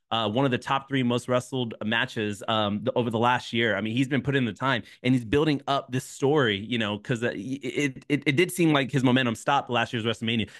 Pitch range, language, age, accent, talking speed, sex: 115-145 Hz, English, 20-39, American, 255 wpm, male